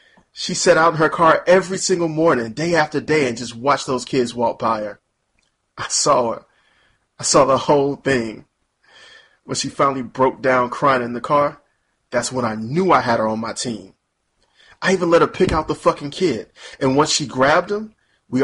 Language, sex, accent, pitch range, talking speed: English, male, American, 115-155 Hz, 200 wpm